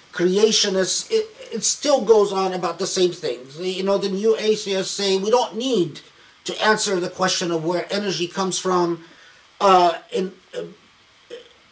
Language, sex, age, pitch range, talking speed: English, male, 50-69, 170-215 Hz, 155 wpm